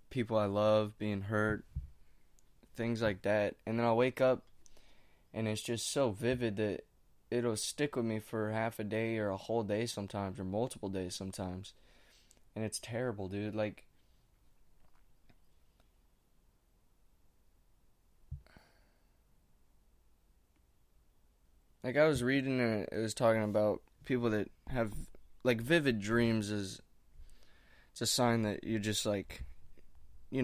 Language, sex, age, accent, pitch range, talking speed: English, male, 20-39, American, 95-115 Hz, 130 wpm